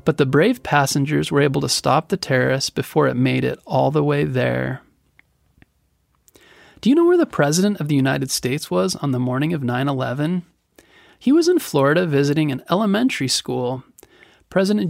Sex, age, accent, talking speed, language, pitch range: male, 30-49, American, 175 wpm, English, 135-185 Hz